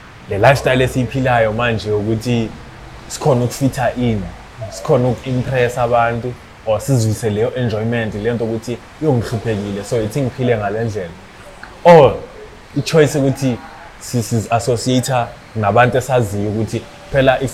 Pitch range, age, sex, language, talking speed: 105-125 Hz, 20-39, male, English, 65 wpm